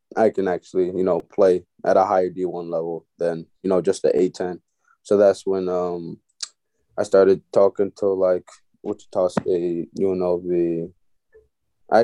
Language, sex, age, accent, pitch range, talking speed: English, male, 20-39, American, 90-110 Hz, 150 wpm